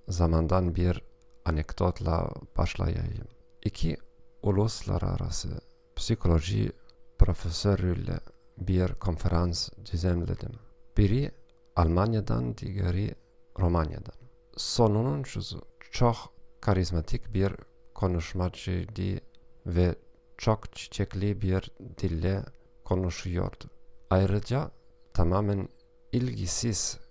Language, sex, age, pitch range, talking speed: Turkish, male, 40-59, 90-120 Hz, 70 wpm